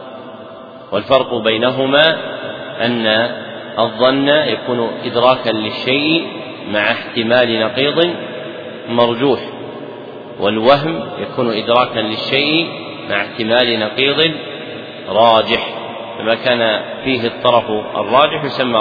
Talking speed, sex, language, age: 80 wpm, male, Arabic, 40-59